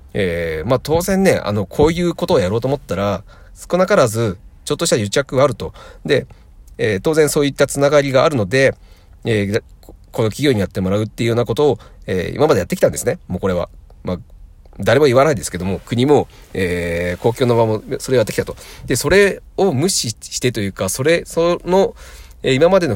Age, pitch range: 40-59, 90-140 Hz